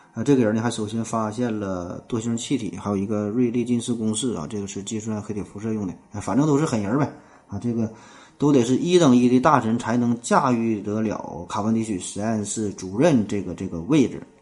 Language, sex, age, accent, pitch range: Chinese, male, 20-39, native, 105-130 Hz